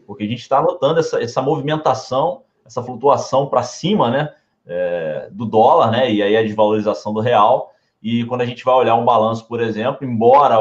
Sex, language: male, Portuguese